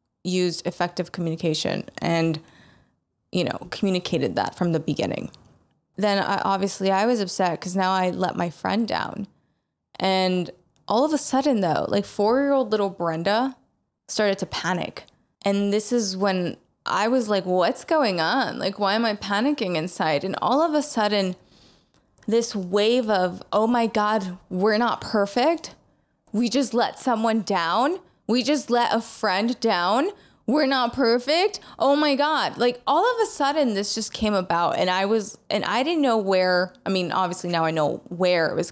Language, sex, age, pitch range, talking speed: English, female, 20-39, 185-245 Hz, 170 wpm